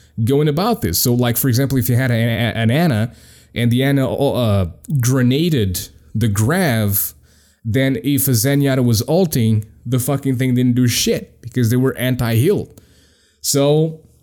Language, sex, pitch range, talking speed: English, male, 115-150 Hz, 160 wpm